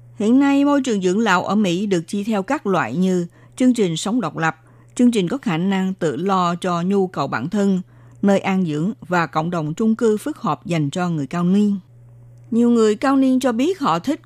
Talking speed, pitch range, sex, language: 225 wpm, 160-220 Hz, female, Vietnamese